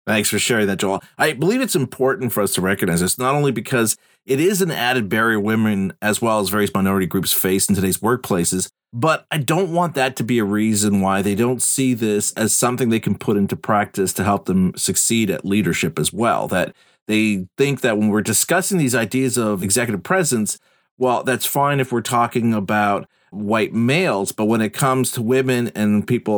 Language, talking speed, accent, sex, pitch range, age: English, 205 wpm, American, male, 105-135 Hz, 40-59